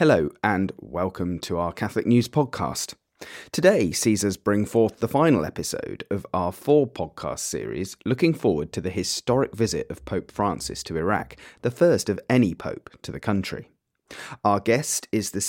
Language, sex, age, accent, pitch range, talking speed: English, male, 30-49, British, 95-120 Hz, 165 wpm